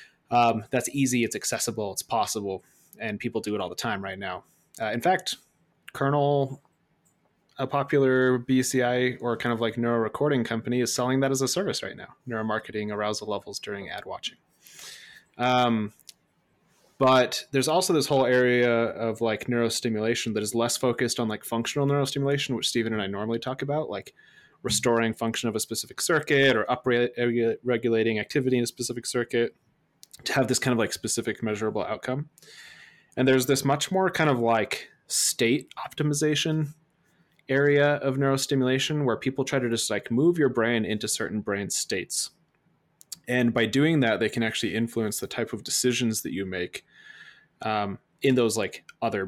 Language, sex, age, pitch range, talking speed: English, male, 20-39, 110-135 Hz, 170 wpm